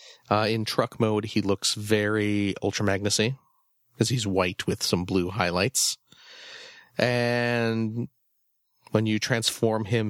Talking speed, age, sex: 125 wpm, 30-49, male